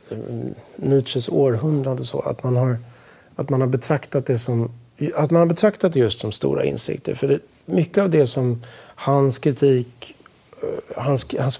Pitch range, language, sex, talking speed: 120-145 Hz, Swedish, male, 165 wpm